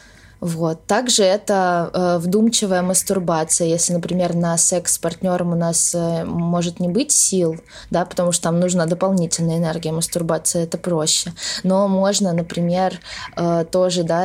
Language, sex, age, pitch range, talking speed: Russian, female, 20-39, 165-180 Hz, 135 wpm